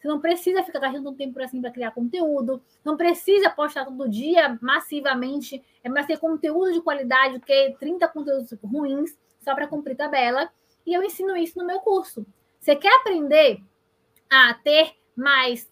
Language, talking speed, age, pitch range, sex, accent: Portuguese, 170 wpm, 20-39, 265-330 Hz, female, Brazilian